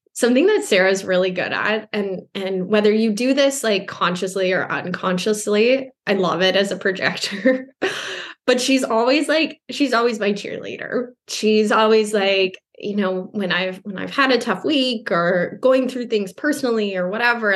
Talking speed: 170 wpm